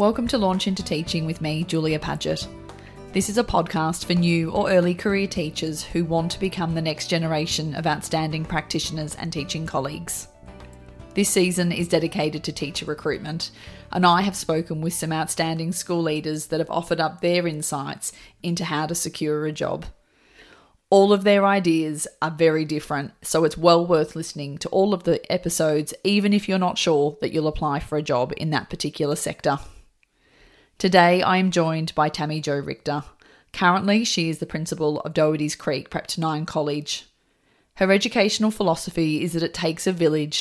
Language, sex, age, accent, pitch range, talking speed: English, female, 30-49, Australian, 155-180 Hz, 180 wpm